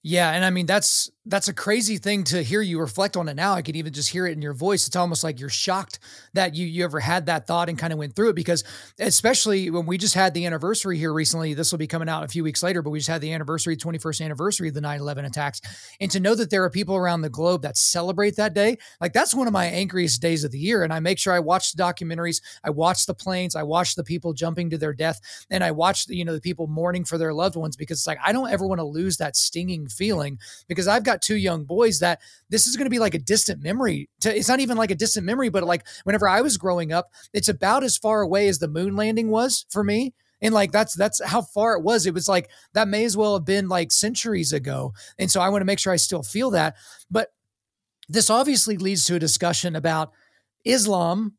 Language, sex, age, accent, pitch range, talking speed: English, male, 30-49, American, 165-200 Hz, 265 wpm